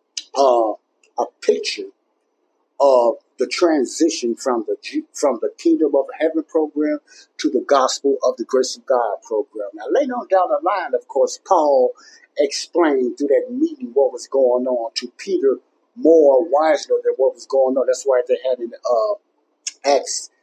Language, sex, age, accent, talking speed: English, male, 60-79, American, 165 wpm